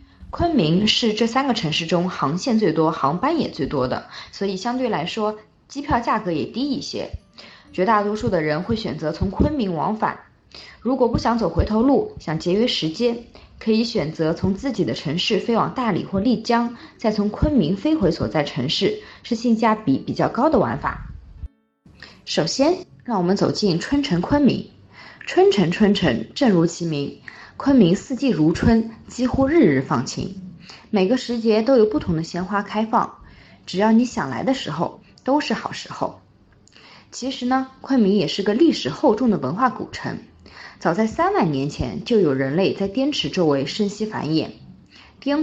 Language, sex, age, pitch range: Chinese, female, 20-39, 180-245 Hz